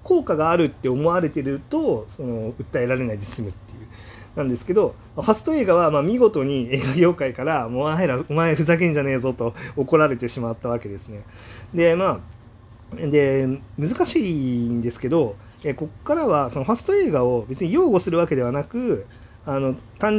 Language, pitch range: Japanese, 115-175 Hz